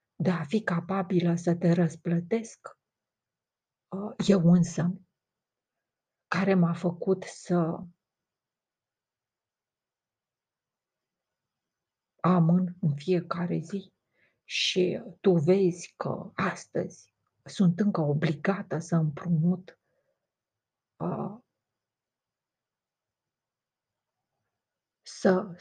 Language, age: Romanian, 50-69